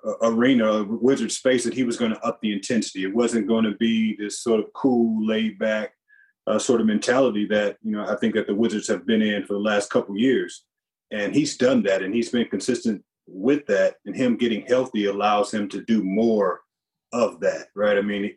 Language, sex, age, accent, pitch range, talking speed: English, male, 30-49, American, 105-130 Hz, 220 wpm